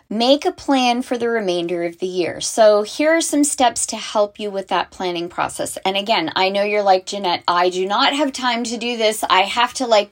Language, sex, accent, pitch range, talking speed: English, female, American, 190-245 Hz, 235 wpm